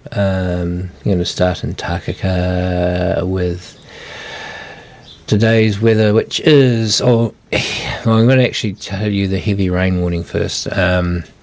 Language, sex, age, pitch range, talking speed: English, male, 50-69, 90-105 Hz, 135 wpm